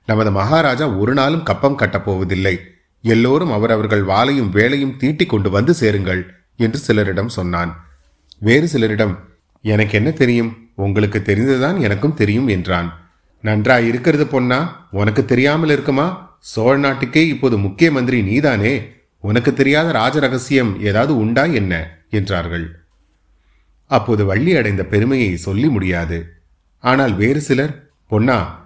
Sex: male